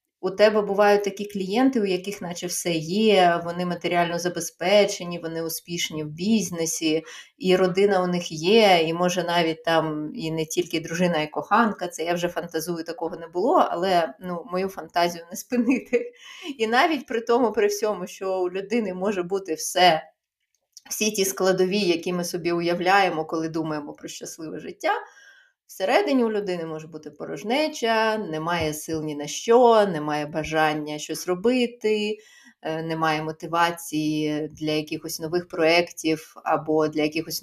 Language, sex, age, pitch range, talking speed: Ukrainian, female, 20-39, 160-210 Hz, 150 wpm